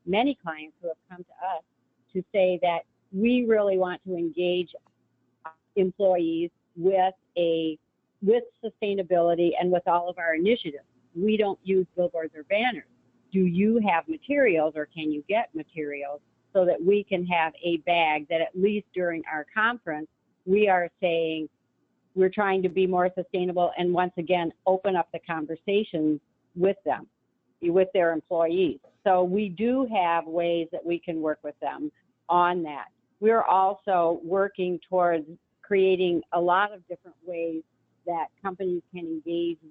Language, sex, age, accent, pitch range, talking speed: English, female, 50-69, American, 165-195 Hz, 155 wpm